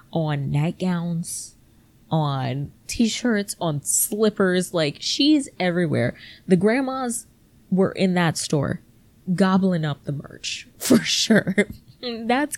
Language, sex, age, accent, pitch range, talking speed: English, female, 20-39, American, 150-205 Hz, 105 wpm